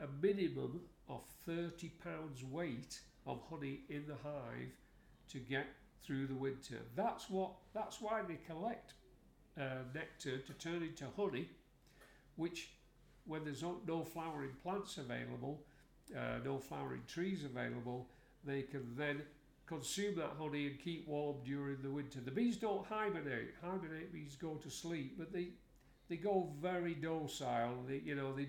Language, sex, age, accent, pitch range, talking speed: English, male, 50-69, British, 135-165 Hz, 150 wpm